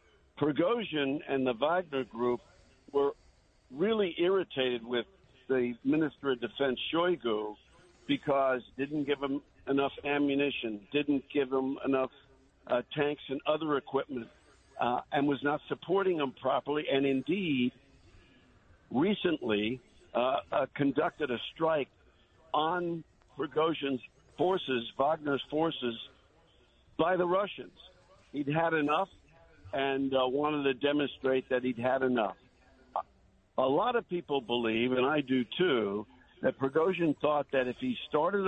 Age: 60-79